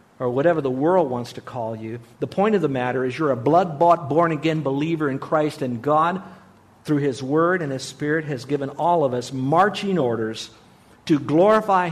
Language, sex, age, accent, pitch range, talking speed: English, male, 50-69, American, 135-180 Hz, 190 wpm